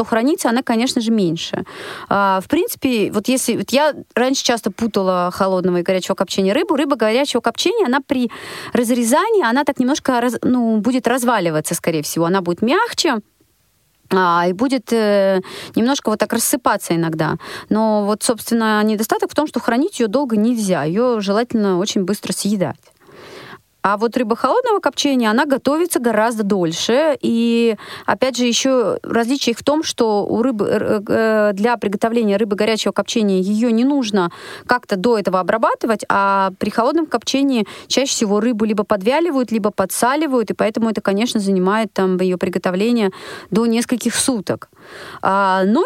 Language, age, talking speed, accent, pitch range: Russian, 30-49, 150 wpm, native, 200-260 Hz